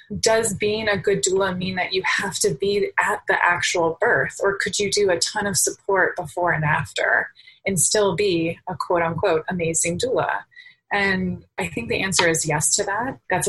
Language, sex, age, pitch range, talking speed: English, female, 20-39, 165-205 Hz, 195 wpm